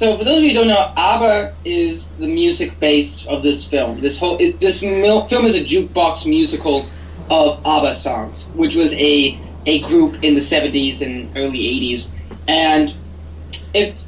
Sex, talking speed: male, 170 wpm